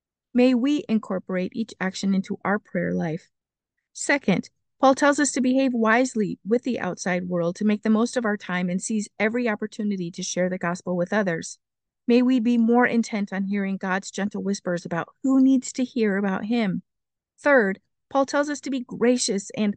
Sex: female